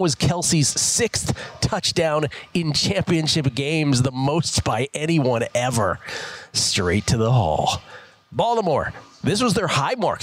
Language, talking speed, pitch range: English, 130 wpm, 125-170 Hz